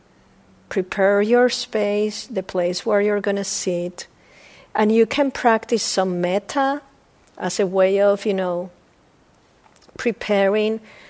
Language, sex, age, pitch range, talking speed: English, female, 50-69, 215-265 Hz, 125 wpm